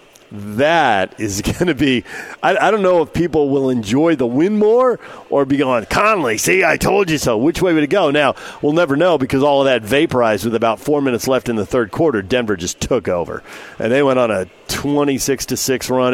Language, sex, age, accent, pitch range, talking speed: English, male, 40-59, American, 105-140 Hz, 225 wpm